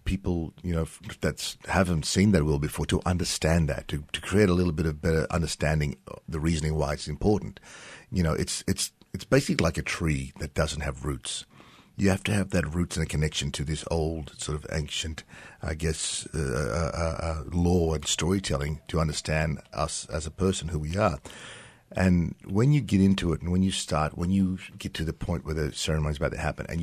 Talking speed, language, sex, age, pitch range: 210 wpm, English, male, 50-69, 75-90 Hz